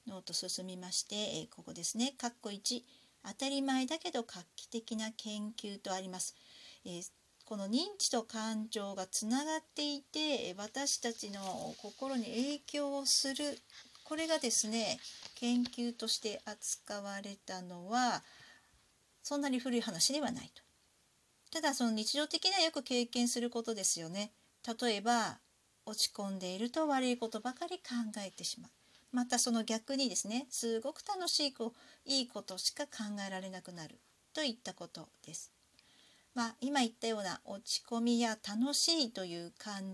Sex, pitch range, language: female, 210-275 Hz, Japanese